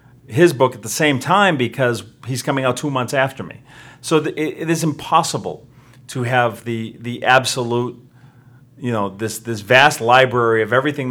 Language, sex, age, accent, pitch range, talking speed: English, male, 40-59, American, 110-130 Hz, 175 wpm